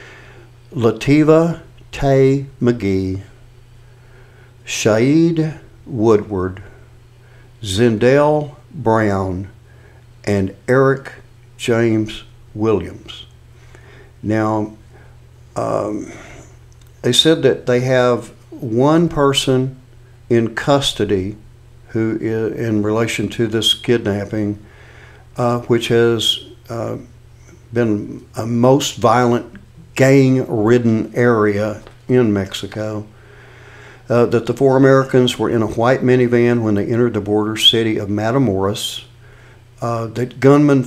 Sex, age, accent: male, 60-79, American